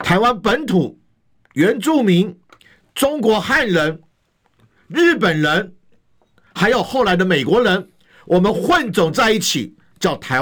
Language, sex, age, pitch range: Chinese, male, 50-69, 125-195 Hz